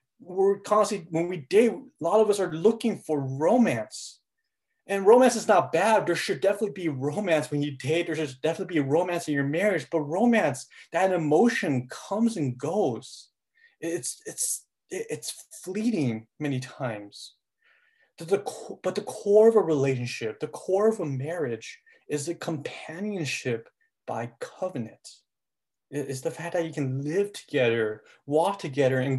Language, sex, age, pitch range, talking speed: English, male, 30-49, 130-195 Hz, 150 wpm